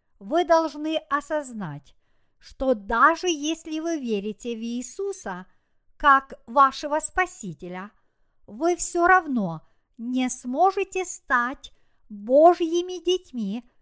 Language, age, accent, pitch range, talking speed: Russian, 50-69, native, 230-320 Hz, 90 wpm